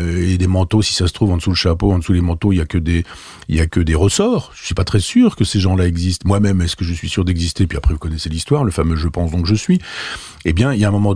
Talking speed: 325 wpm